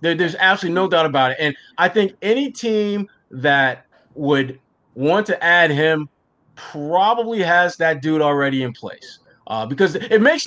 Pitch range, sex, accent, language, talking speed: 150-210 Hz, male, American, English, 160 wpm